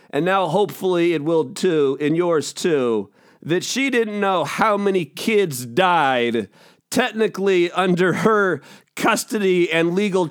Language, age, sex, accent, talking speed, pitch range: English, 40-59, male, American, 135 wpm, 180-255 Hz